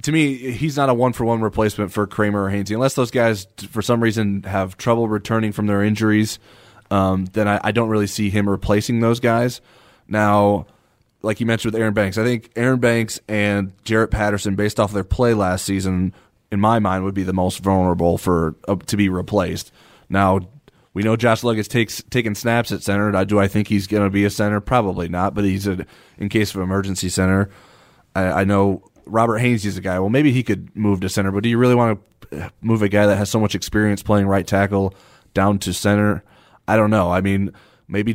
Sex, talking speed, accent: male, 220 wpm, American